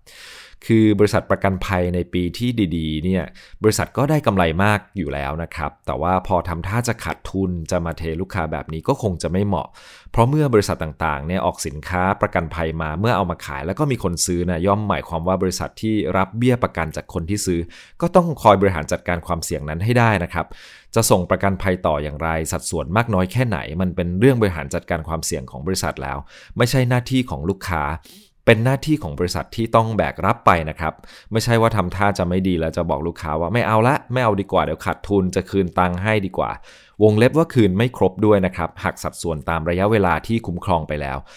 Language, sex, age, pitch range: English, male, 20-39, 85-110 Hz